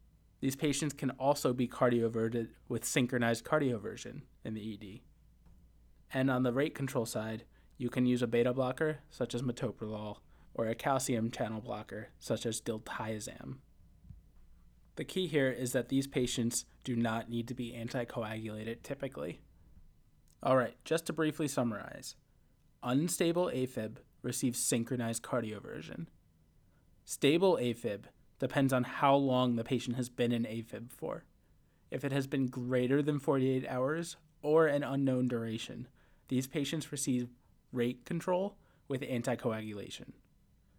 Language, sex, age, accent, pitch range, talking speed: English, male, 20-39, American, 115-135 Hz, 135 wpm